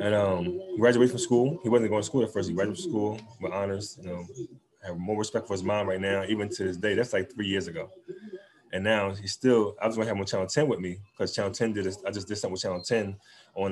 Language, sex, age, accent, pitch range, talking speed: English, male, 20-39, American, 95-135 Hz, 285 wpm